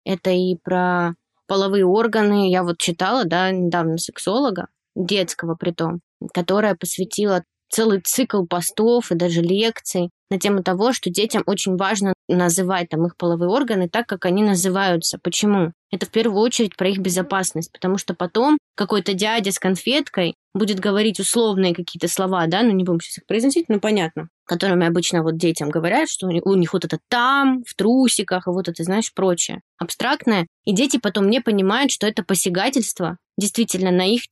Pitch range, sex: 180-220 Hz, female